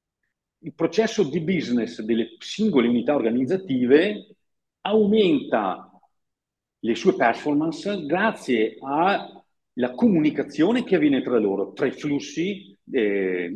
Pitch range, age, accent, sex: 130-215 Hz, 50-69, native, male